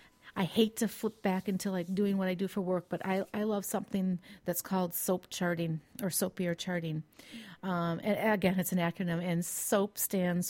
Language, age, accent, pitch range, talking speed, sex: English, 40-59, American, 170-200 Hz, 195 wpm, female